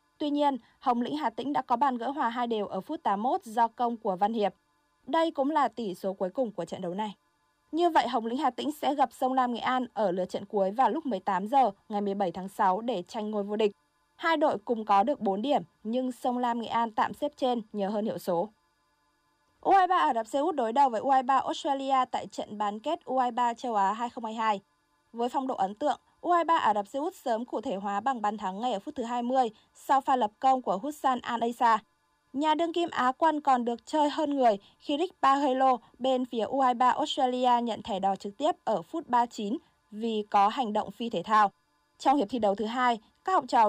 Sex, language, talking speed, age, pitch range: female, Vietnamese, 230 wpm, 20-39, 210-275 Hz